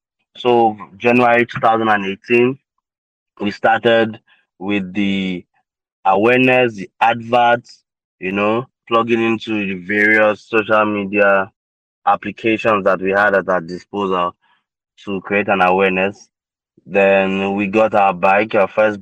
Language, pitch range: English, 95-110 Hz